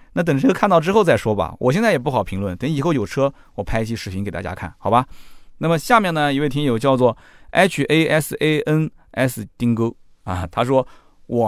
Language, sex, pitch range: Chinese, male, 100-155 Hz